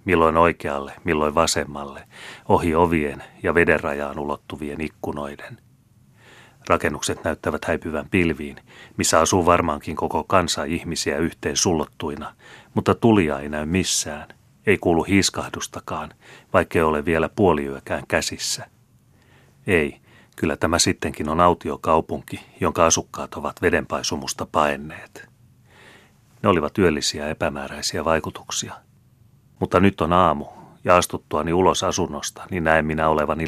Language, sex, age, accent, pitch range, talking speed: Finnish, male, 30-49, native, 75-95 Hz, 115 wpm